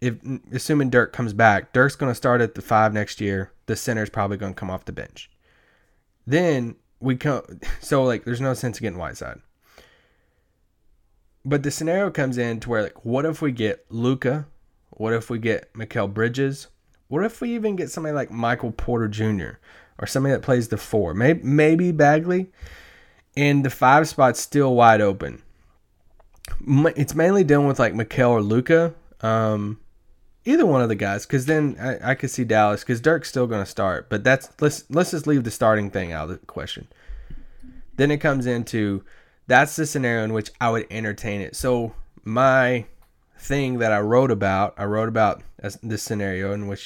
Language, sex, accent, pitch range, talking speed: English, male, American, 105-140 Hz, 185 wpm